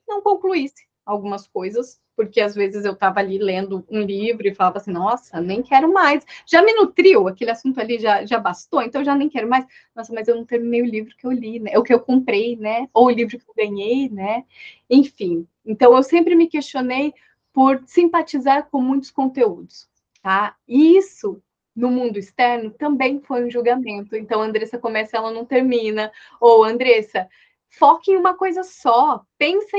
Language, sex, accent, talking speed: Portuguese, female, Brazilian, 190 wpm